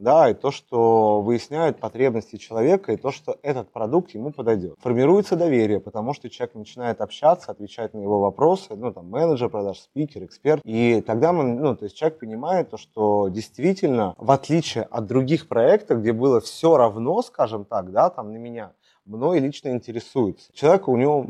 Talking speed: 180 wpm